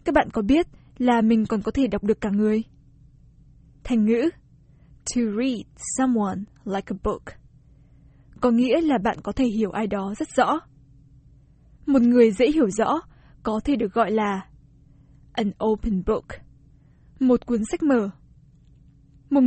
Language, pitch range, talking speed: Vietnamese, 205-245 Hz, 155 wpm